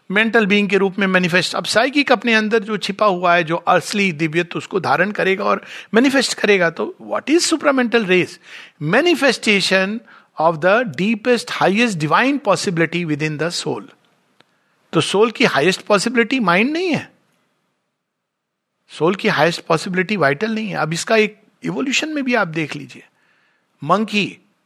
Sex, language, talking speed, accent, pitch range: male, Hindi, 130 wpm, native, 175-240 Hz